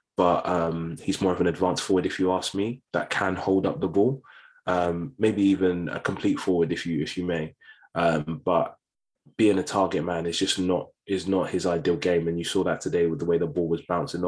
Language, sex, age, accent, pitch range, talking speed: English, male, 20-39, British, 85-95 Hz, 230 wpm